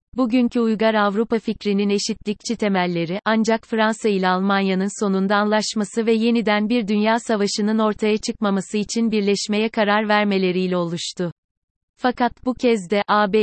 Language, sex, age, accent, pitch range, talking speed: Turkish, female, 30-49, native, 195-225 Hz, 130 wpm